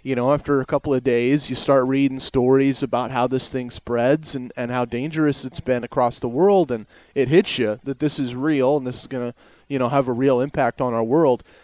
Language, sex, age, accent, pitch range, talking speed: English, male, 30-49, American, 130-160 Hz, 235 wpm